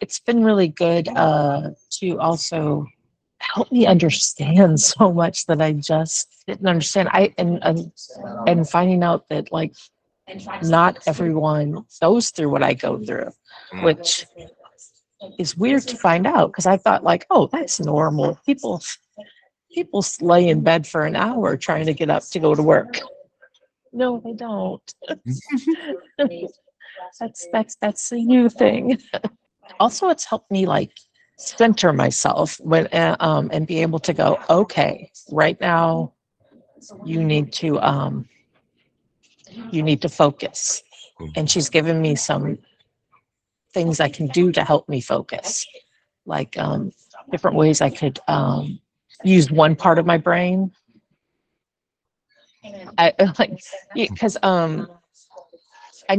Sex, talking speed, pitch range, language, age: female, 135 wpm, 160-220 Hz, English, 50-69